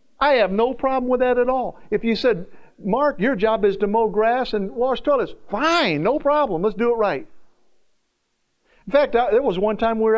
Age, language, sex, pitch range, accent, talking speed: 50-69, English, male, 190-250 Hz, American, 210 wpm